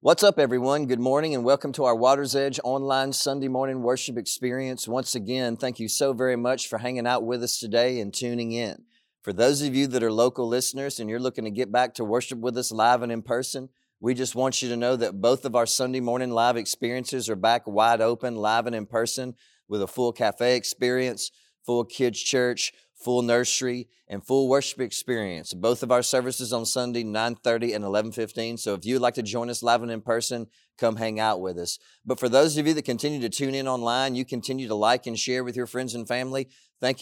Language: English